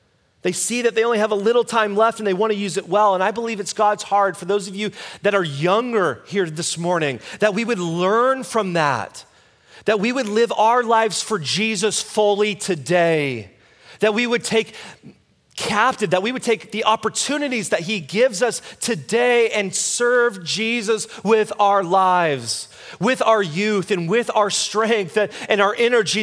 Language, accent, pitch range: English, American, 180-225 Hz